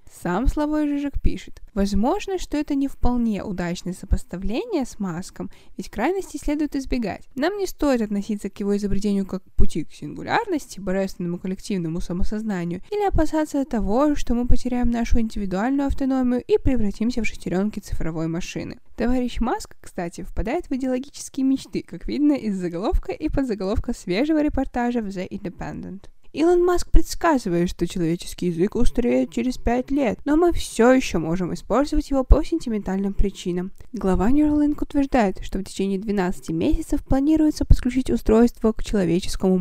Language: Russian